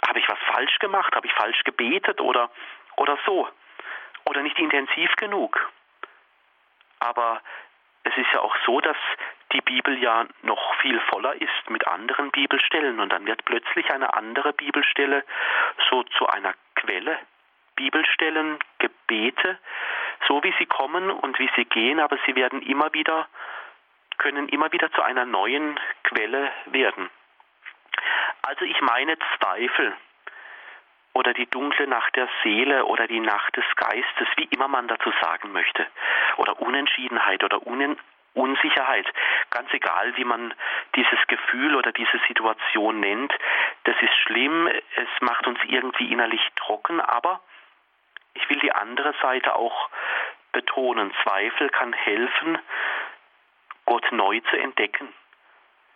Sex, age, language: male, 40-59, German